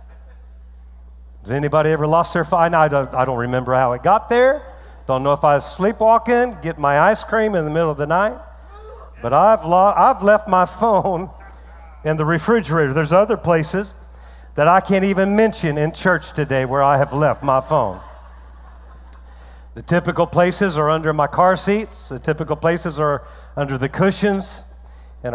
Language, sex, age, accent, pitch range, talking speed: English, male, 50-69, American, 130-190 Hz, 175 wpm